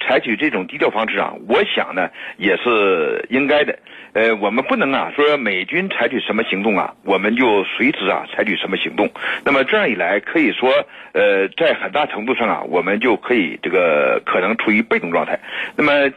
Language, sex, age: Chinese, male, 60-79